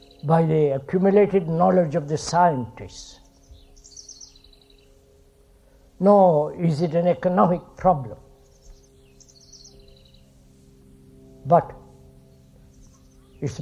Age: 60-79